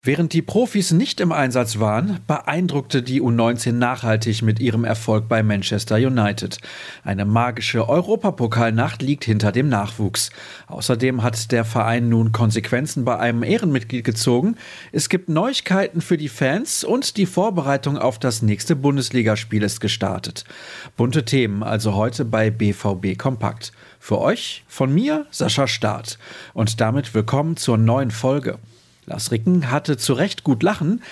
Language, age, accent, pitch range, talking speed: German, 40-59, German, 115-155 Hz, 145 wpm